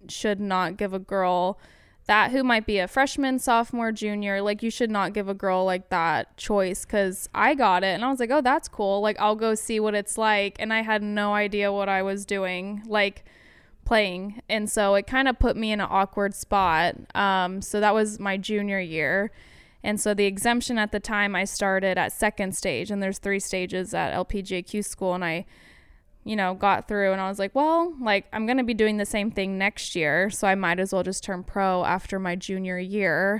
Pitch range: 185-215 Hz